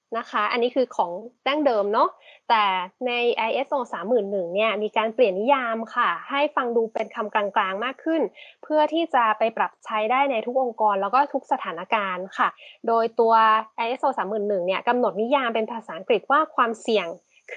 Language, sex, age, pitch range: Thai, female, 20-39, 215-265 Hz